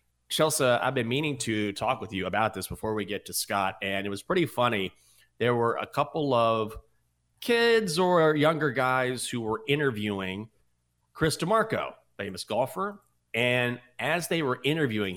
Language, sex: English, male